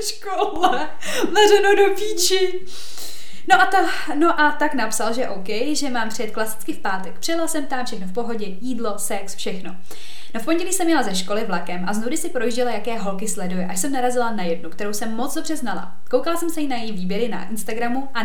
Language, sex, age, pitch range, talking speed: Czech, female, 20-39, 210-295 Hz, 205 wpm